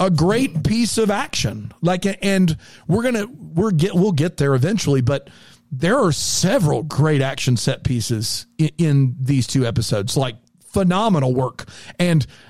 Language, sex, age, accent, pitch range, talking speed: English, male, 40-59, American, 140-200 Hz, 155 wpm